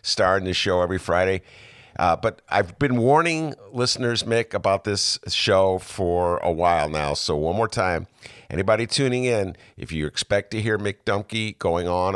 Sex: male